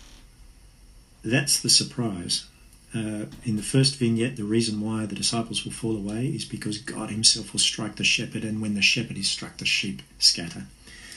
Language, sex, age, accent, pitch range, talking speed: English, male, 50-69, Australian, 100-130 Hz, 175 wpm